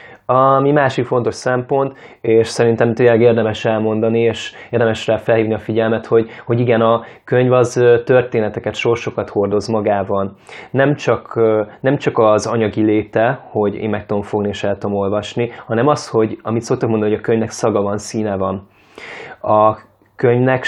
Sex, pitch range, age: male, 105-120 Hz, 20-39